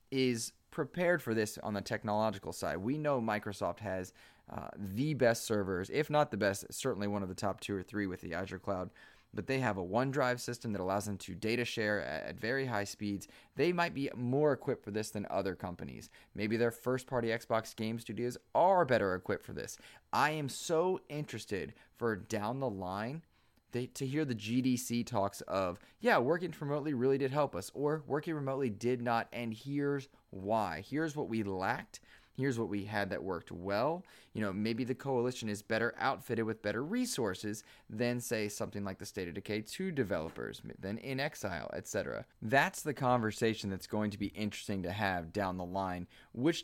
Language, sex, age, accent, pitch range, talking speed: English, male, 20-39, American, 100-135 Hz, 195 wpm